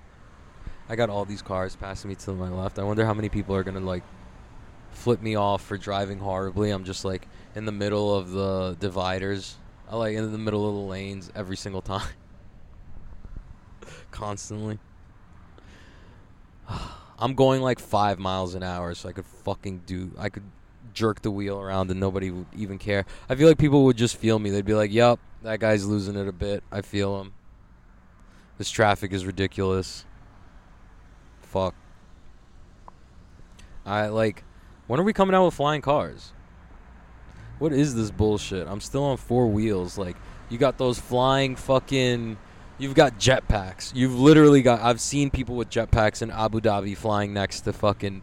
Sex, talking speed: male, 170 wpm